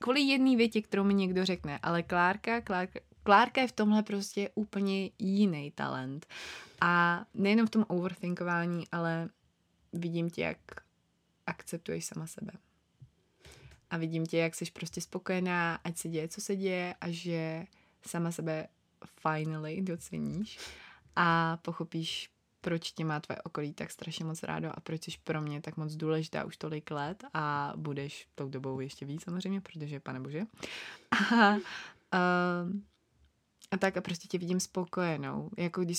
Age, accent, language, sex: 20-39, native, Czech, female